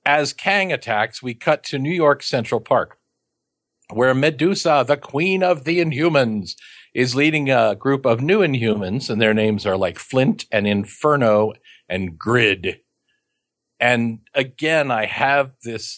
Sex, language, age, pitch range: male, English, 50-69, 105-135 Hz